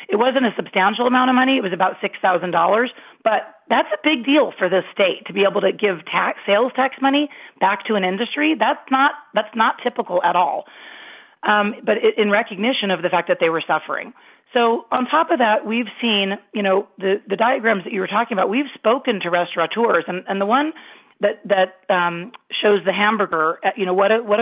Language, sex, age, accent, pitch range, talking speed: English, female, 40-59, American, 185-235 Hz, 215 wpm